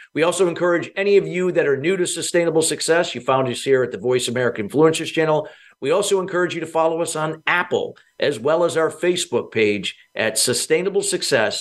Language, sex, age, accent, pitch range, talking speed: English, male, 50-69, American, 130-170 Hz, 210 wpm